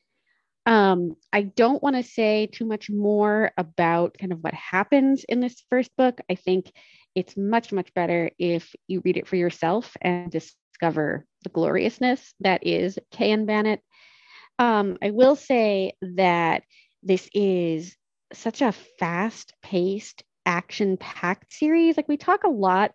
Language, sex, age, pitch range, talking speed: English, female, 30-49, 180-225 Hz, 150 wpm